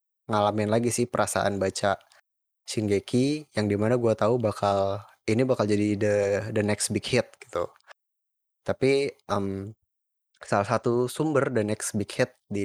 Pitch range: 95-115 Hz